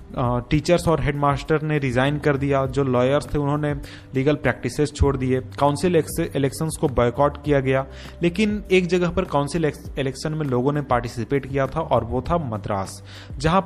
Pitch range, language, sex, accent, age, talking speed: 125-155 Hz, Hindi, male, native, 30-49, 170 wpm